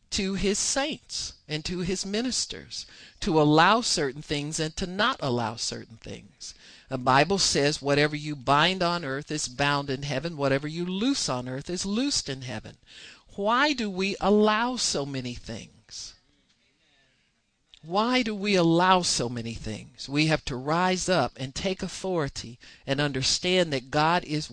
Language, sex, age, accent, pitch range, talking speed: English, male, 50-69, American, 130-180 Hz, 160 wpm